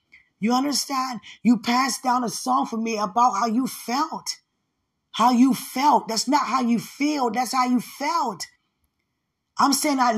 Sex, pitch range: female, 245-315 Hz